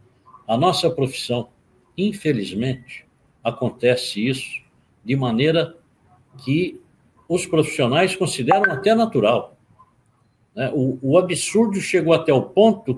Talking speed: 100 wpm